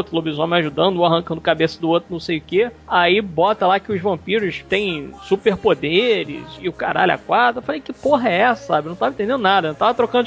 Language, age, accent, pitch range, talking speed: Portuguese, 20-39, Brazilian, 170-230 Hz, 240 wpm